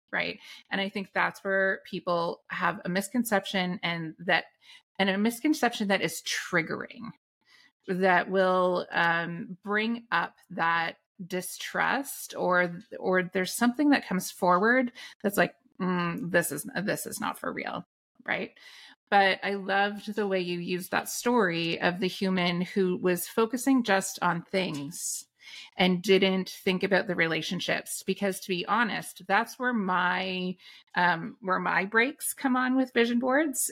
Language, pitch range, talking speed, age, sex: English, 180-225 Hz, 150 wpm, 30-49, female